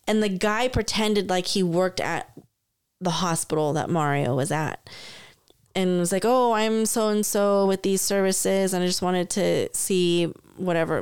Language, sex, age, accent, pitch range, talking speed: English, female, 20-39, American, 180-220 Hz, 165 wpm